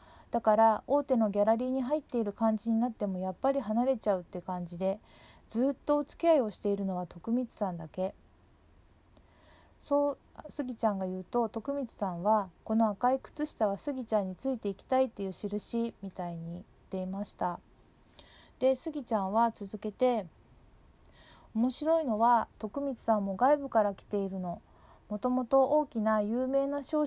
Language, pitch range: Japanese, 195-260 Hz